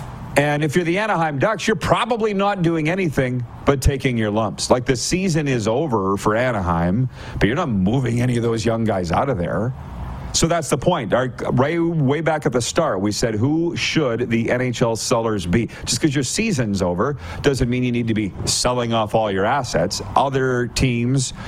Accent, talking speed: American, 200 wpm